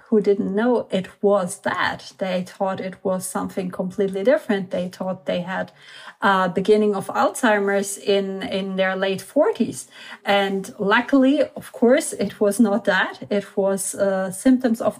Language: German